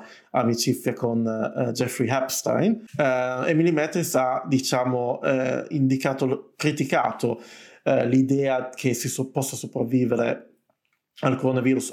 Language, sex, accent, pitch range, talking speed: Italian, male, native, 120-135 Hz, 110 wpm